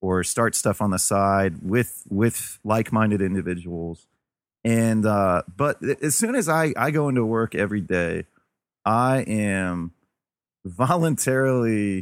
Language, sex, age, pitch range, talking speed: English, male, 30-49, 100-130 Hz, 130 wpm